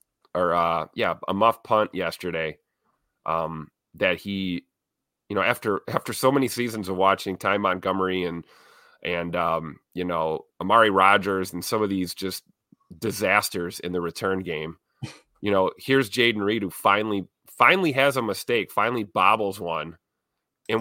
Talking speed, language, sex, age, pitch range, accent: 155 wpm, English, male, 30-49, 90-110 Hz, American